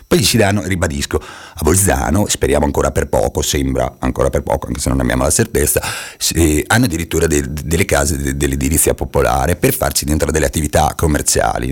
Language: Italian